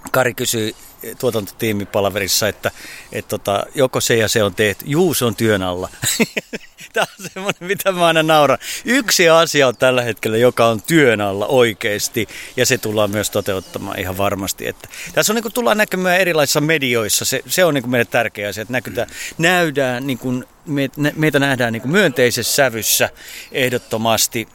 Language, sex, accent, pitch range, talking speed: Finnish, male, native, 105-145 Hz, 165 wpm